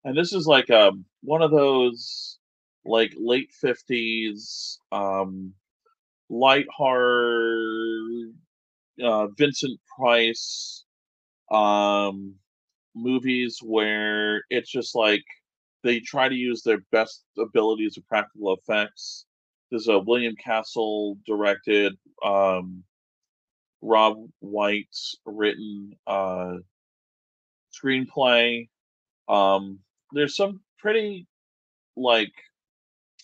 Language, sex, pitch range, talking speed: English, male, 100-120 Hz, 90 wpm